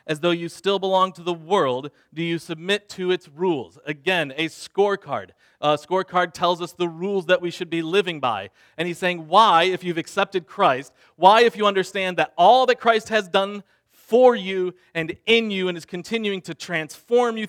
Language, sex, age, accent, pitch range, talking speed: English, male, 40-59, American, 170-215 Hz, 200 wpm